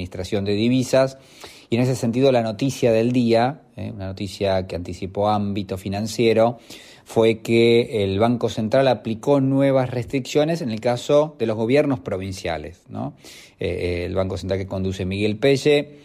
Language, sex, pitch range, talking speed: Italian, male, 100-130 Hz, 155 wpm